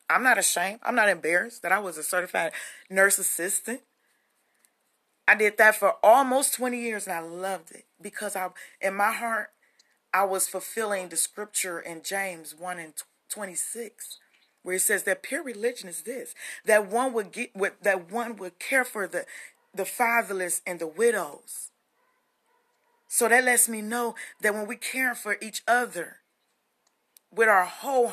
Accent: American